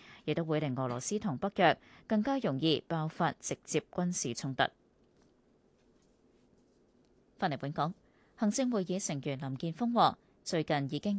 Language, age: Chinese, 20-39